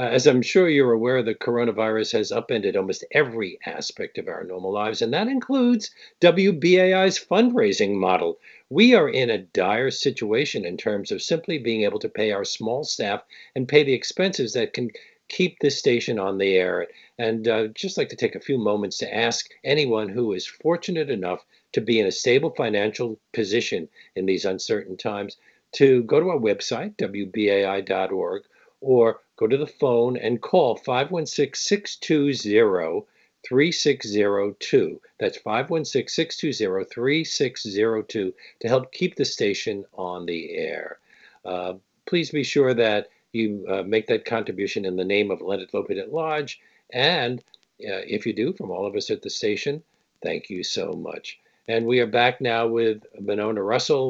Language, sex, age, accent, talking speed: English, male, 50-69, American, 160 wpm